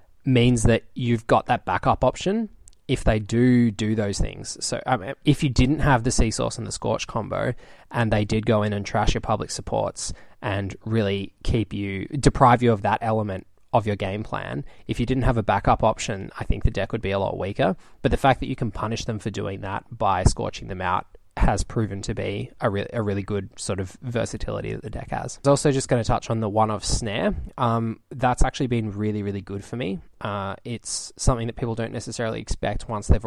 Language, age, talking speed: English, 20-39, 225 wpm